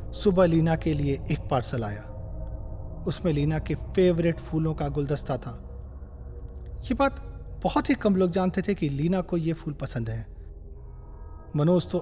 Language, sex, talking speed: Hindi, male, 160 wpm